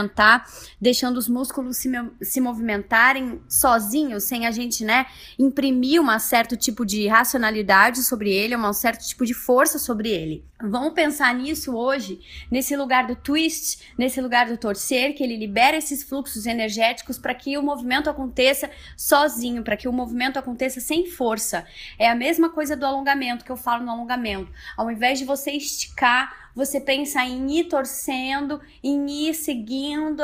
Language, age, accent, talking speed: Portuguese, 20-39, Brazilian, 165 wpm